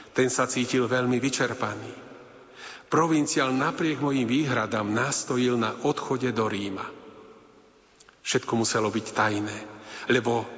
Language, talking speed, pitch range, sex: Slovak, 110 wpm, 110-130 Hz, male